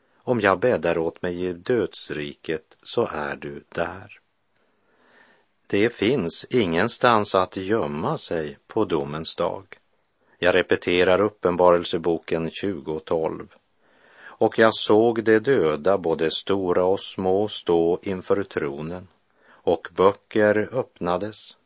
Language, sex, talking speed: Swedish, male, 110 wpm